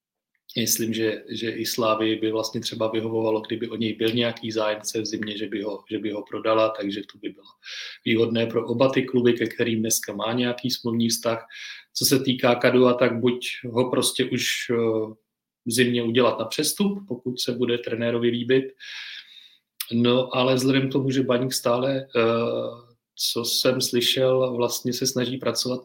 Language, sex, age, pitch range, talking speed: Czech, male, 30-49, 115-130 Hz, 170 wpm